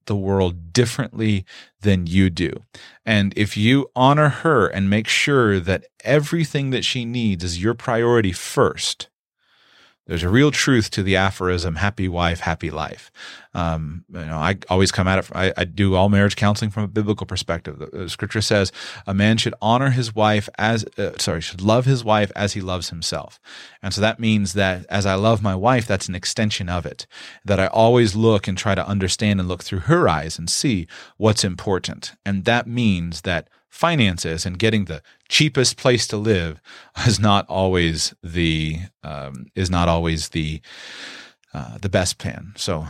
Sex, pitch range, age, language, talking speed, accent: male, 90-115 Hz, 30-49, English, 180 wpm, American